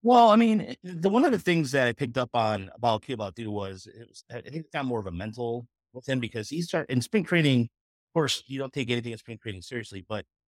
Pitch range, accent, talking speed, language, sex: 105-125 Hz, American, 270 wpm, English, male